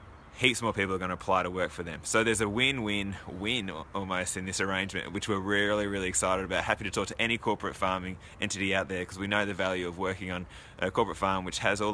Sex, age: male, 20-39